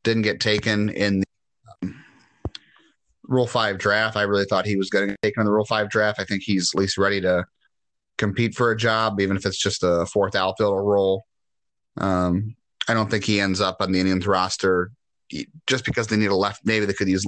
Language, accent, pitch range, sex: English, American, 95-110 Hz, male